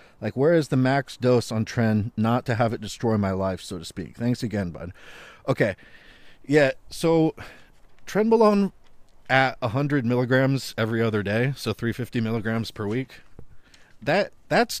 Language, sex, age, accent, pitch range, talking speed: English, male, 40-59, American, 100-135 Hz, 165 wpm